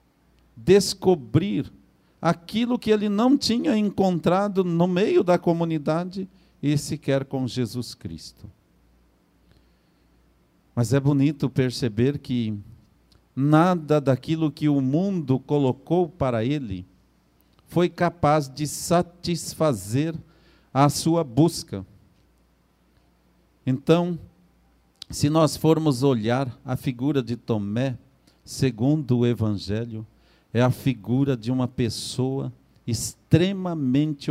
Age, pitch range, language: 50-69, 120-170 Hz, Portuguese